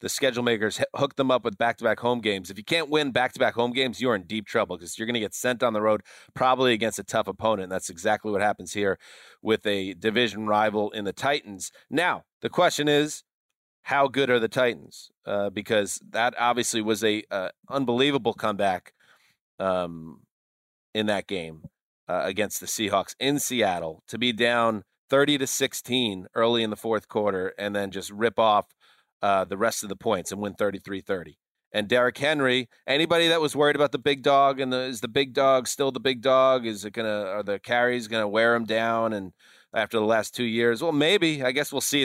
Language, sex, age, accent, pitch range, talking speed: English, male, 30-49, American, 105-130 Hz, 210 wpm